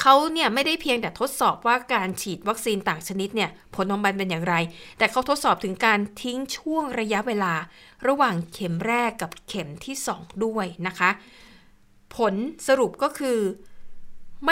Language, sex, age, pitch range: Thai, female, 60-79, 185-240 Hz